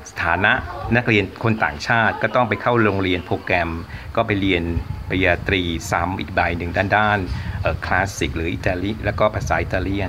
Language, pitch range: Thai, 90-110 Hz